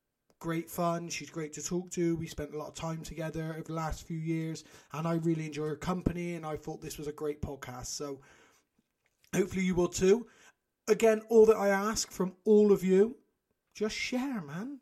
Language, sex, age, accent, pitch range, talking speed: English, male, 30-49, British, 160-225 Hz, 205 wpm